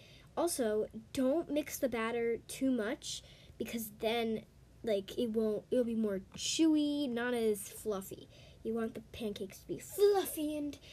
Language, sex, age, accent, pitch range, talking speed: English, female, 10-29, American, 215-295 Hz, 155 wpm